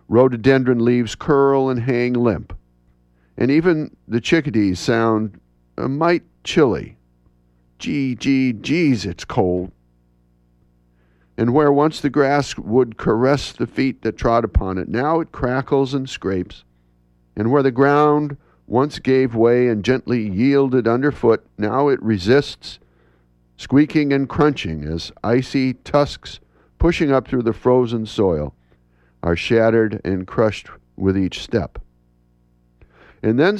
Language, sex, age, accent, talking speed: English, male, 50-69, American, 130 wpm